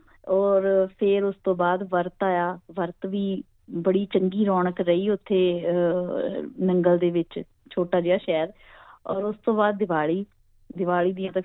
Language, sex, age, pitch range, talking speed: Punjabi, female, 20-39, 185-240 Hz, 140 wpm